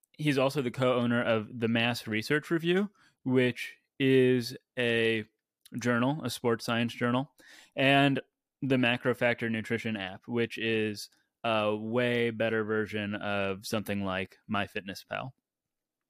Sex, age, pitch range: male, 20-39, 110-130 Hz